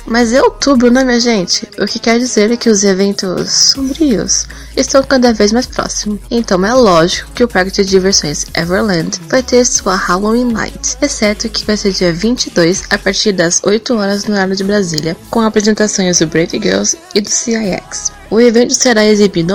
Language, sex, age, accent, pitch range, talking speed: Portuguese, female, 10-29, Brazilian, 185-230 Hz, 185 wpm